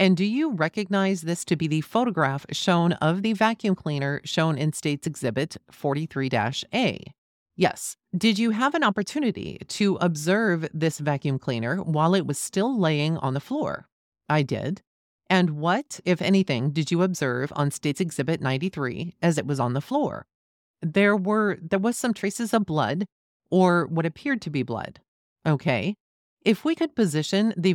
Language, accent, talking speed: English, American, 165 wpm